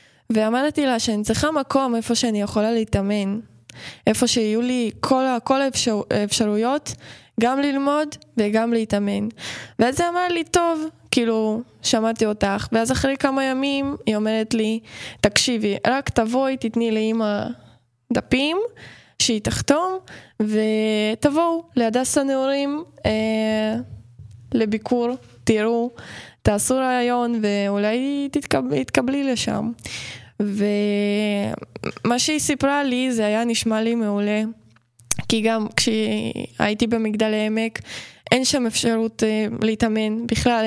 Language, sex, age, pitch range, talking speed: Hebrew, female, 20-39, 210-250 Hz, 110 wpm